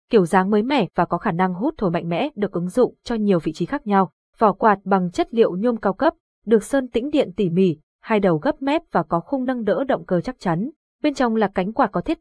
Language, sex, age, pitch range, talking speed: Vietnamese, female, 20-39, 180-235 Hz, 270 wpm